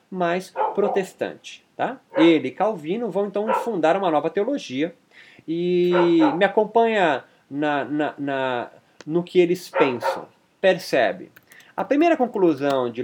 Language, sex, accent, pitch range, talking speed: Portuguese, male, Brazilian, 155-210 Hz, 105 wpm